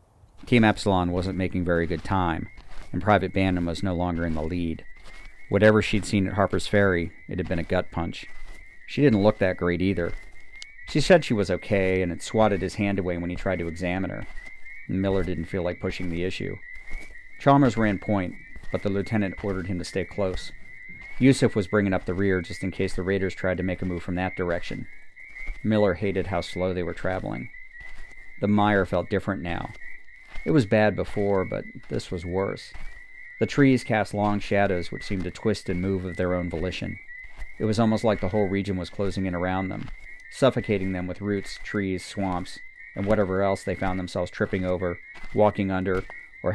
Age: 40-59